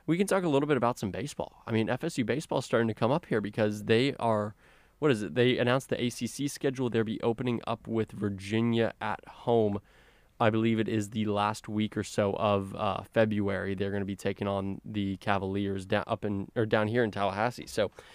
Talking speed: 220 wpm